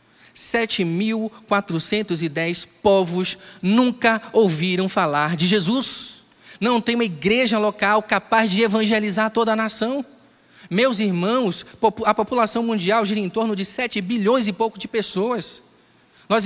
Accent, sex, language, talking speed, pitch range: Brazilian, male, Portuguese, 125 wpm, 205-255 Hz